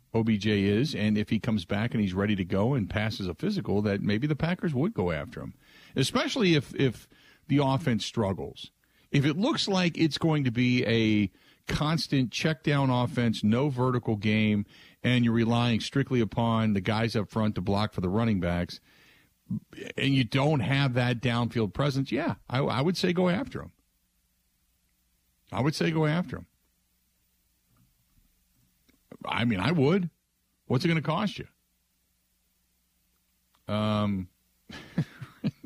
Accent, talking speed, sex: American, 155 wpm, male